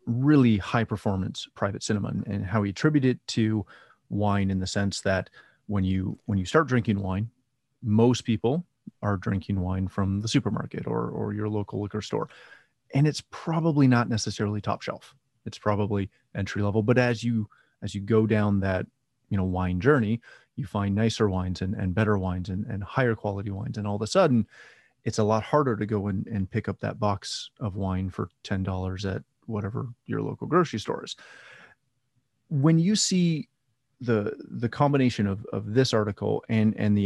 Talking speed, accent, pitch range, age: 185 wpm, American, 100-120 Hz, 30-49